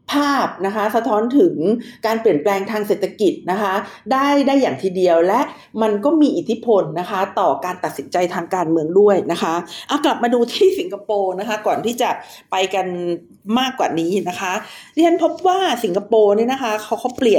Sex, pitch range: female, 185-240 Hz